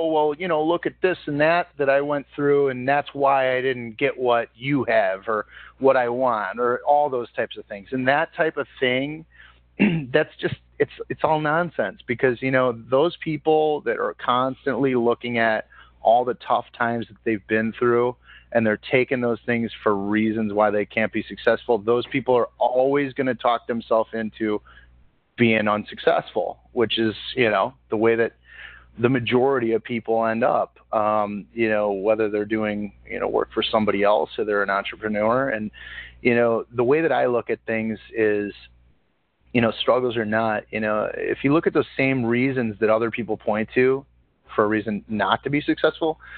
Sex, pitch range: male, 110-135 Hz